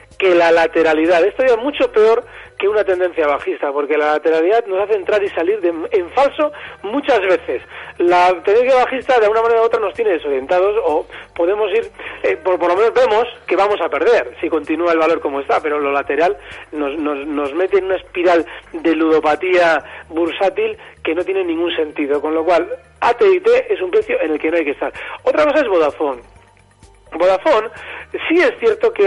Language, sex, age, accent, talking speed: Spanish, male, 40-59, Spanish, 200 wpm